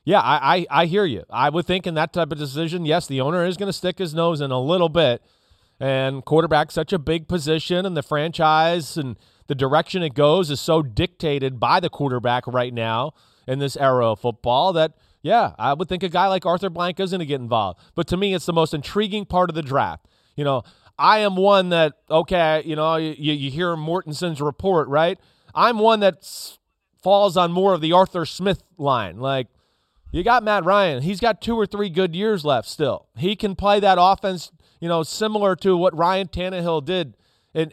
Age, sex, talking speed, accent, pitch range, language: 30-49, male, 215 wpm, American, 145-185 Hz, English